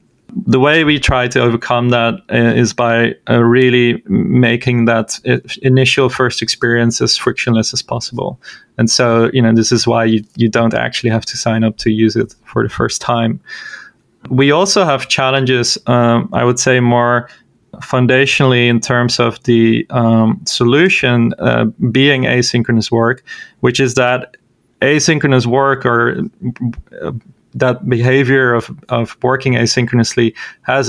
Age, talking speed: 30-49, 150 wpm